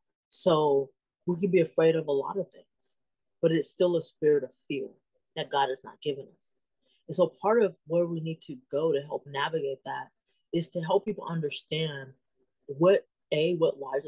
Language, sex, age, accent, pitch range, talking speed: English, female, 30-49, American, 150-190 Hz, 190 wpm